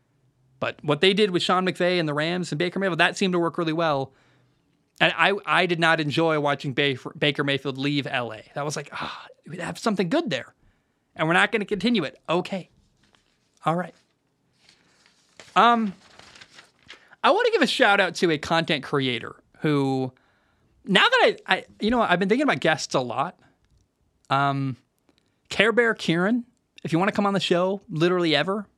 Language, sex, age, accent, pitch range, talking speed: English, male, 20-39, American, 145-200 Hz, 190 wpm